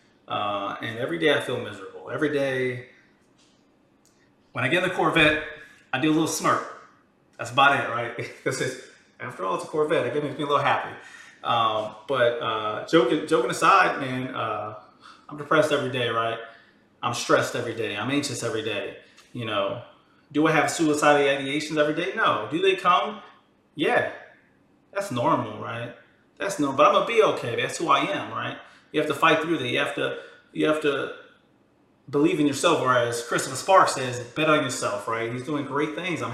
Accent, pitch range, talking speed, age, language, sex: American, 130-160 Hz, 190 wpm, 30-49, English, male